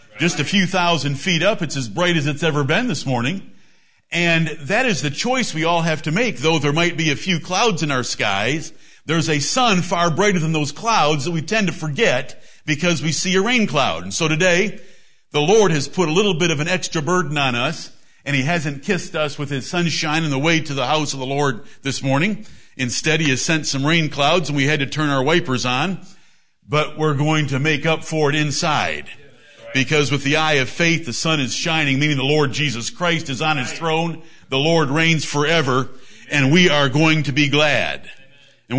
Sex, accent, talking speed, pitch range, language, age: male, American, 225 wpm, 140-170 Hz, English, 50-69